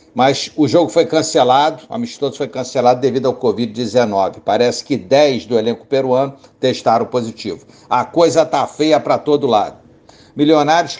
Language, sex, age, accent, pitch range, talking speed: Portuguese, male, 60-79, Brazilian, 125-150 Hz, 155 wpm